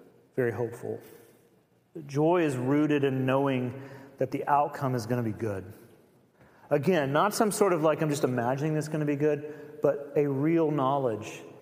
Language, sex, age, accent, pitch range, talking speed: English, male, 40-59, American, 140-205 Hz, 175 wpm